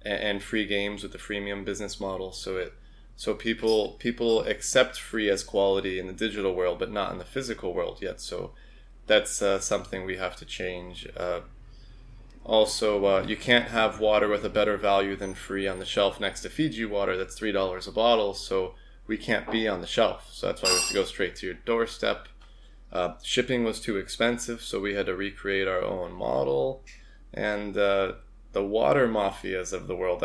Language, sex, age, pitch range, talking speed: English, male, 20-39, 95-115 Hz, 200 wpm